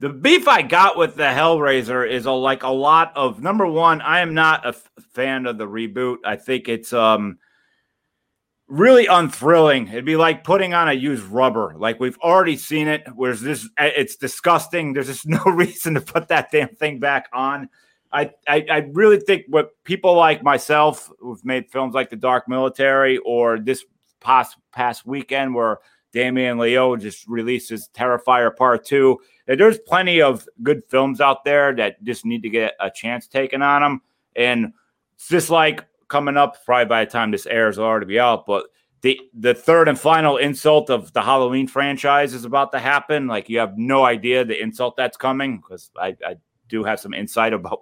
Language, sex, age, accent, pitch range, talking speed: English, male, 30-49, American, 120-150 Hz, 190 wpm